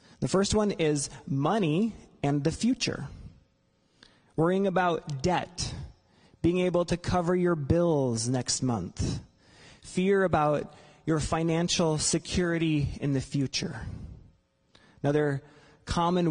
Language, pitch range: English, 145-180 Hz